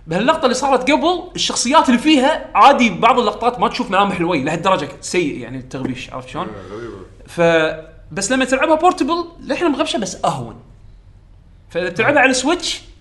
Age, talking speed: 20-39, 150 wpm